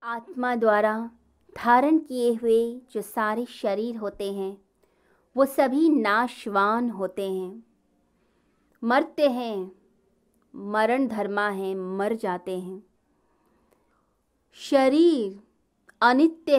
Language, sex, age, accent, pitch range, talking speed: Hindi, female, 20-39, native, 200-260 Hz, 90 wpm